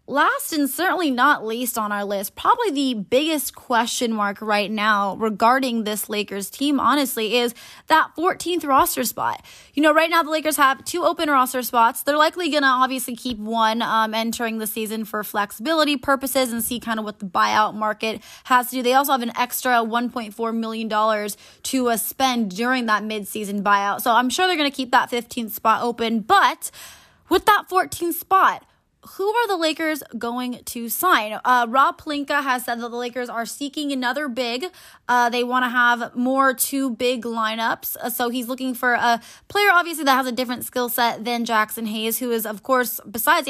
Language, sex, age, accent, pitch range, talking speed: English, female, 20-39, American, 225-275 Hz, 195 wpm